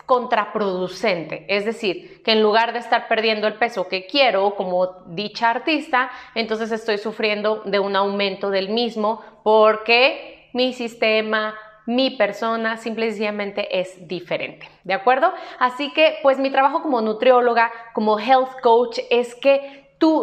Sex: female